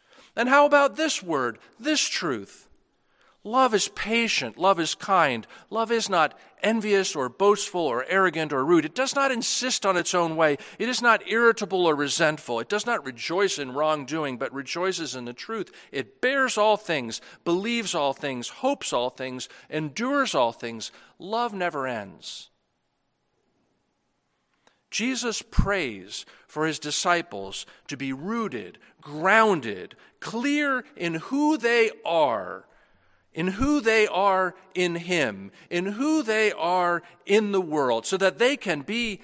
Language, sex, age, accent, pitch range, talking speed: English, male, 50-69, American, 165-235 Hz, 145 wpm